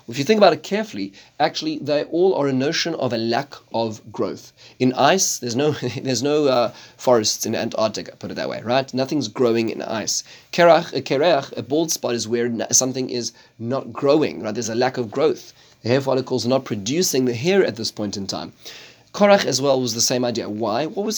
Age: 30-49